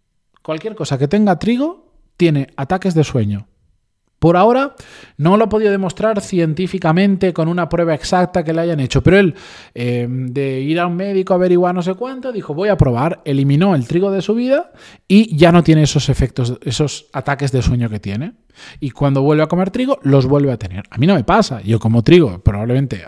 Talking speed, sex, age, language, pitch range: 205 wpm, male, 20-39, Spanish, 130-190 Hz